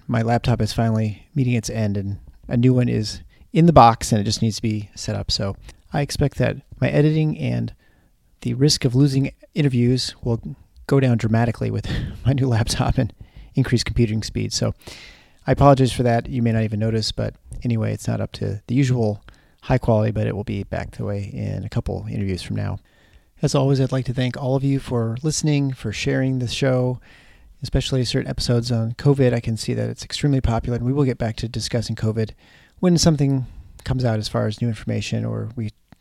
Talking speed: 210 wpm